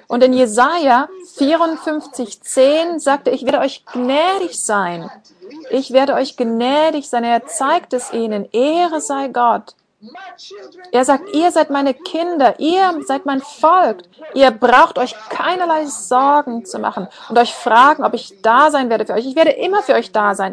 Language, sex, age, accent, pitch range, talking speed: German, female, 40-59, German, 230-305 Hz, 165 wpm